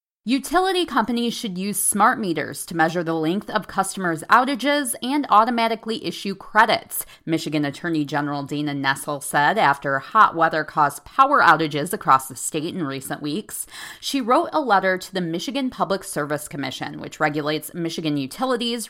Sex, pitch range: female, 155-225 Hz